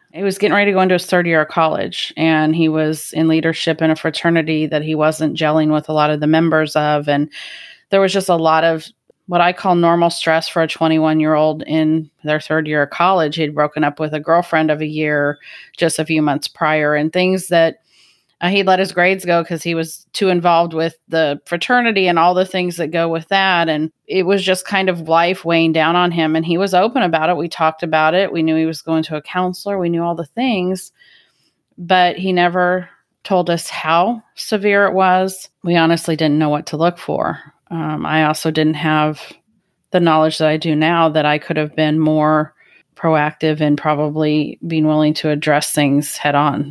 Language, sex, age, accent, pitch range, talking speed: English, female, 30-49, American, 155-175 Hz, 220 wpm